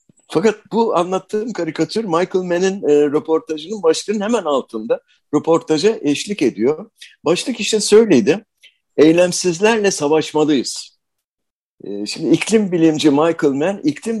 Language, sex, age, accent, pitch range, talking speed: Turkish, male, 60-79, native, 120-180 Hz, 110 wpm